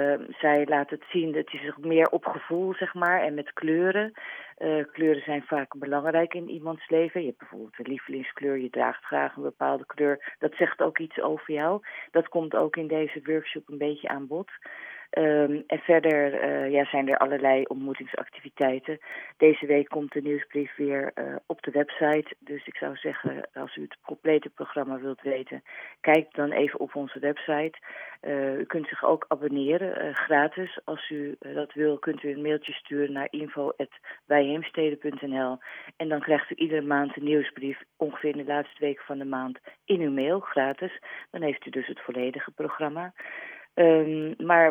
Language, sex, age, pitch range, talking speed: Dutch, female, 40-59, 140-160 Hz, 180 wpm